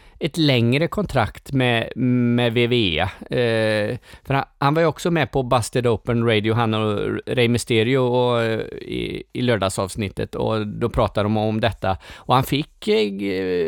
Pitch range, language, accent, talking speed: 105-130 Hz, Swedish, native, 160 wpm